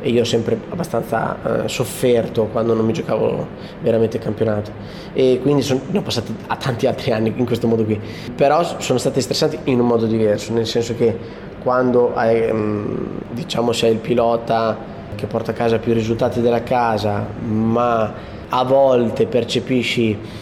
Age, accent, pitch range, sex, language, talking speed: 20-39, native, 110-130 Hz, male, Italian, 160 wpm